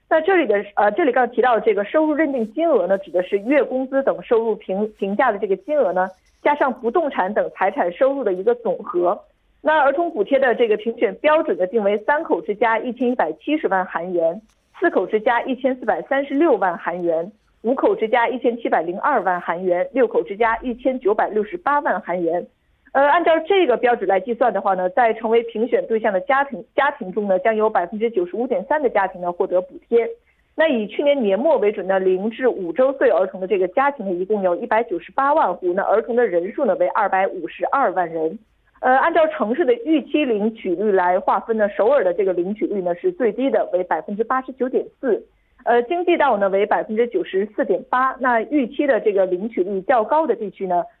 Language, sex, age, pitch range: Korean, female, 50-69, 195-290 Hz